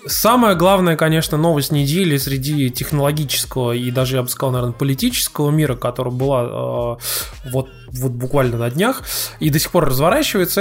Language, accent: Russian, native